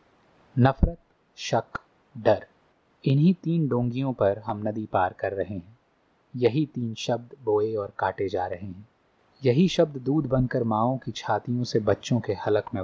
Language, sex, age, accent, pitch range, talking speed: Hindi, male, 30-49, native, 105-140 Hz, 160 wpm